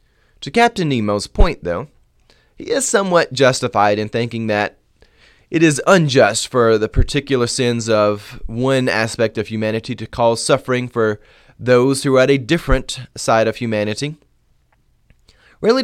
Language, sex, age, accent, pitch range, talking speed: English, male, 30-49, American, 100-130 Hz, 145 wpm